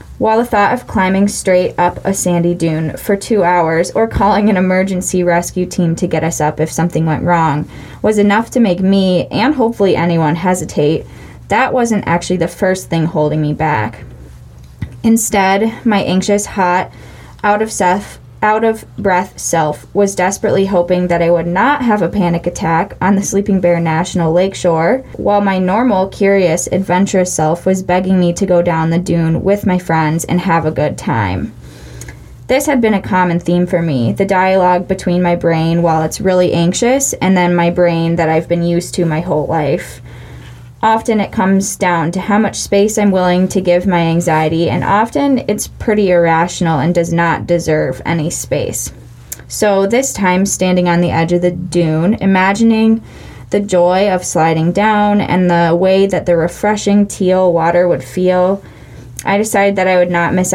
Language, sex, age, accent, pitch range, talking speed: English, female, 10-29, American, 165-195 Hz, 180 wpm